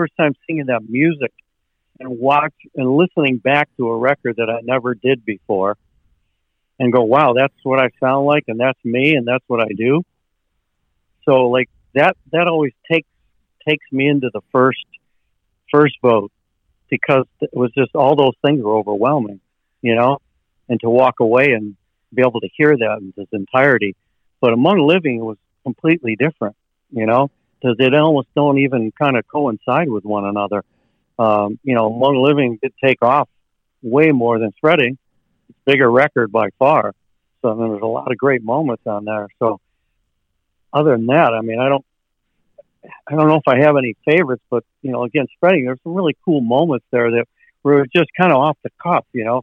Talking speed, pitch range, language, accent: 190 wpm, 110-140 Hz, English, American